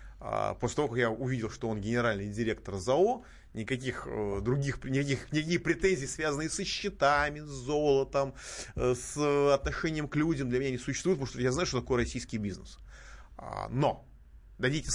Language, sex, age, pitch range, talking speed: Russian, male, 30-49, 105-140 Hz, 155 wpm